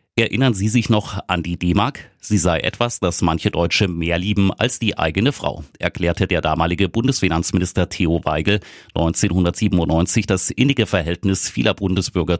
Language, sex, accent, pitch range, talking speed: German, male, German, 85-105 Hz, 150 wpm